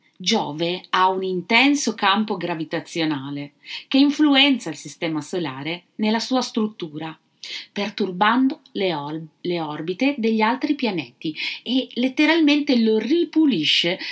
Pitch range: 175-260 Hz